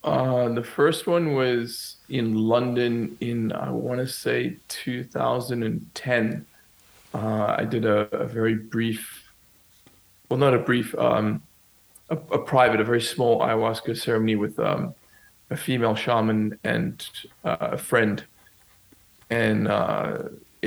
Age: 20-39